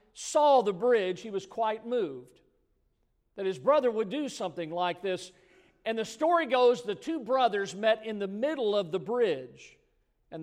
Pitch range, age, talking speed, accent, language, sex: 165-200 Hz, 50-69, 175 wpm, American, English, male